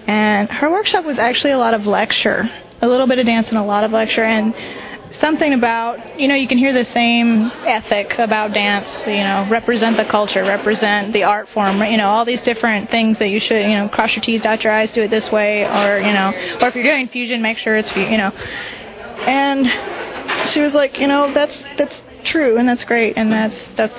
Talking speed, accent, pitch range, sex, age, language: 225 wpm, American, 215-255 Hz, female, 20-39, English